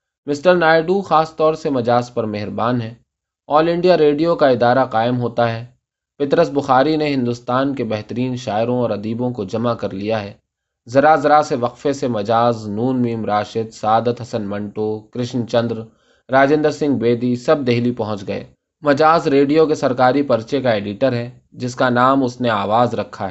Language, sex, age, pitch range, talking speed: Urdu, male, 20-39, 115-145 Hz, 170 wpm